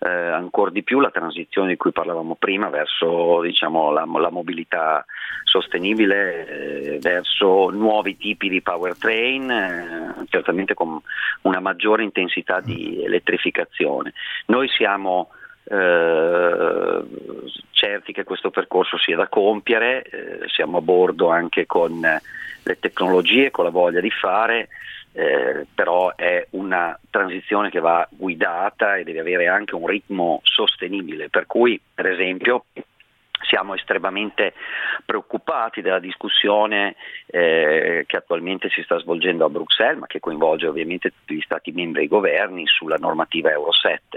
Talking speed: 135 wpm